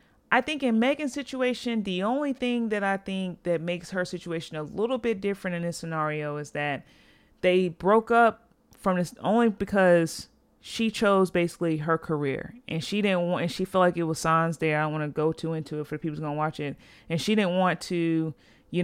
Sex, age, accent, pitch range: female, 30-49, American, 160-190 Hz